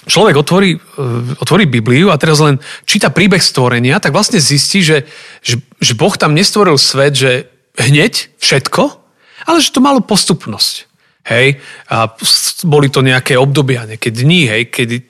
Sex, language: male, Slovak